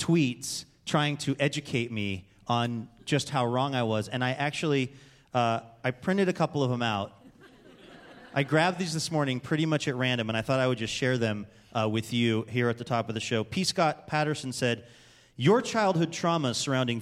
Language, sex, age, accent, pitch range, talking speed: English, male, 30-49, American, 115-150 Hz, 200 wpm